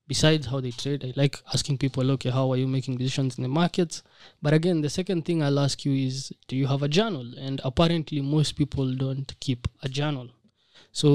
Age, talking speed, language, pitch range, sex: 20-39, 215 wpm, English, 130-155 Hz, male